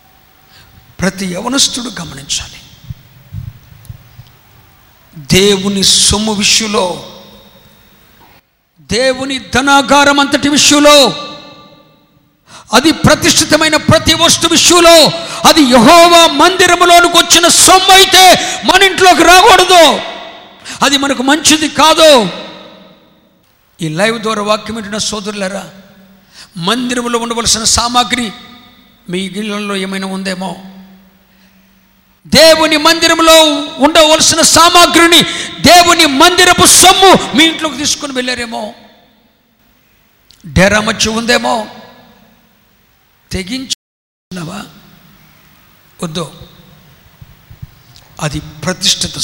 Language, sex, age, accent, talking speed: Telugu, male, 50-69, native, 70 wpm